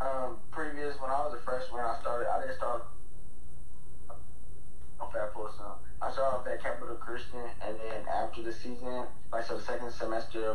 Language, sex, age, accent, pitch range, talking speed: English, male, 20-39, American, 105-120 Hz, 180 wpm